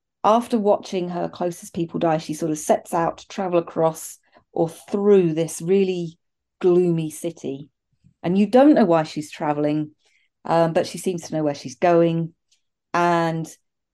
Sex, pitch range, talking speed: female, 155-200 Hz, 160 wpm